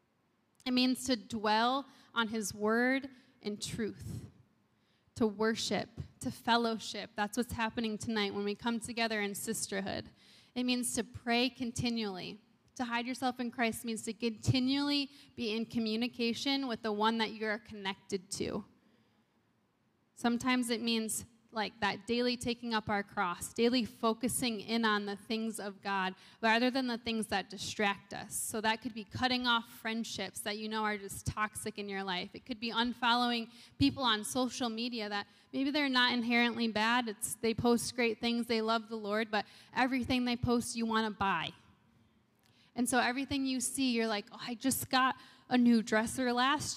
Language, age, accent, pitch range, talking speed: English, 20-39, American, 215-250 Hz, 170 wpm